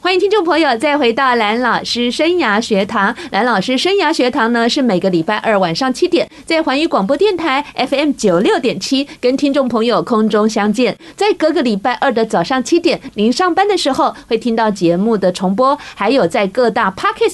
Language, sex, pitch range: Chinese, female, 210-285 Hz